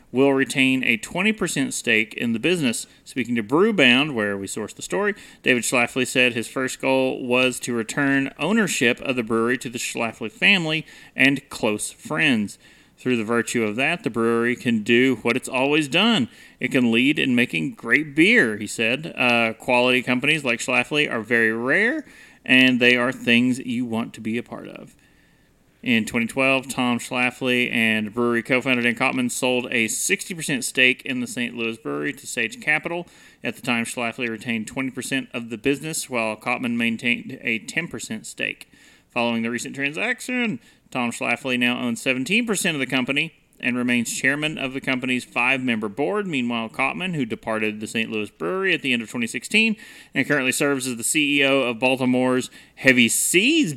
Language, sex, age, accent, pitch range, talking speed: English, male, 30-49, American, 120-140 Hz, 175 wpm